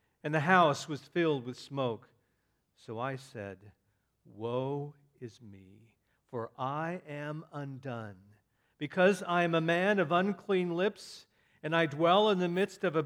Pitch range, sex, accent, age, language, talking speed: 120-170 Hz, male, American, 50-69, English, 150 wpm